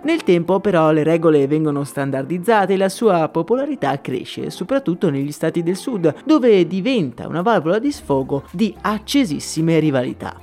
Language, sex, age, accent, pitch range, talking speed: Italian, male, 30-49, native, 155-220 Hz, 150 wpm